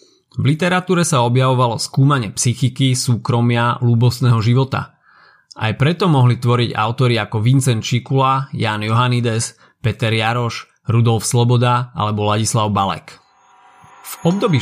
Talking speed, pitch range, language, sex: 115 wpm, 115-145 Hz, Slovak, male